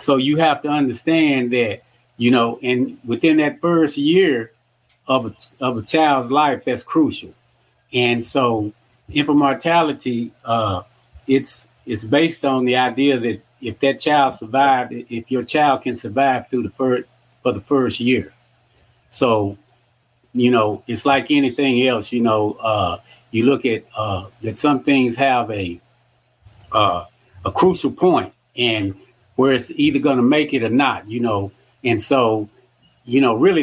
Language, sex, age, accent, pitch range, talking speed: English, male, 30-49, American, 115-135 Hz, 160 wpm